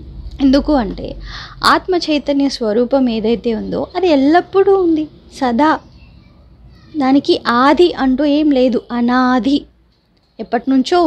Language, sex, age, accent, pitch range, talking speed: Telugu, female, 20-39, native, 240-305 Hz, 100 wpm